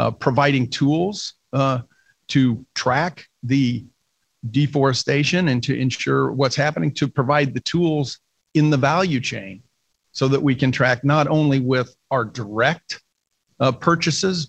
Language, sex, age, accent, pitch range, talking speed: English, male, 50-69, American, 125-150 Hz, 135 wpm